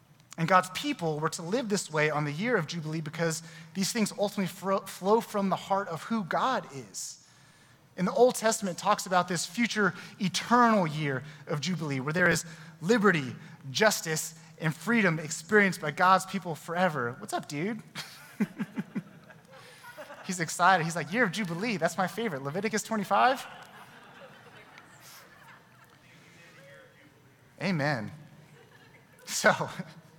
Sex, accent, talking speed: male, American, 130 wpm